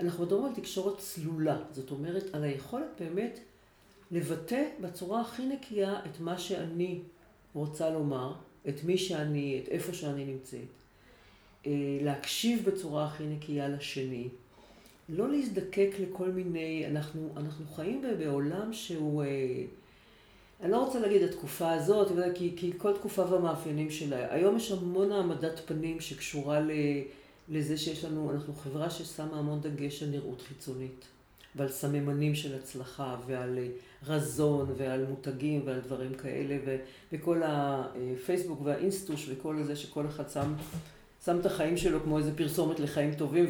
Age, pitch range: 40-59, 140-175 Hz